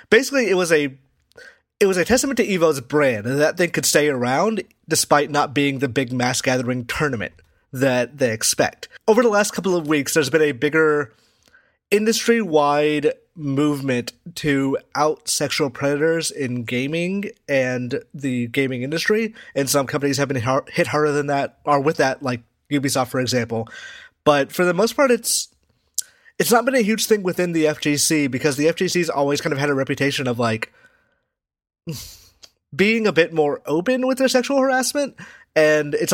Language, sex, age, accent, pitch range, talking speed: English, male, 30-49, American, 140-200 Hz, 170 wpm